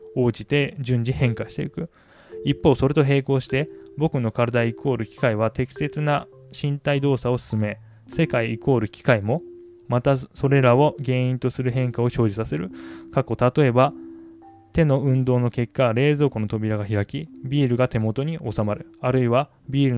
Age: 20-39